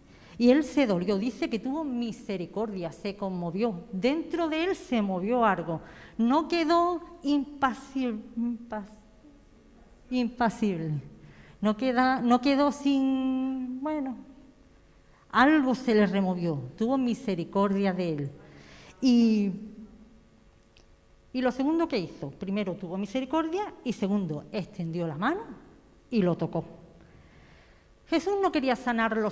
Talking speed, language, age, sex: 115 wpm, Spanish, 40-59, female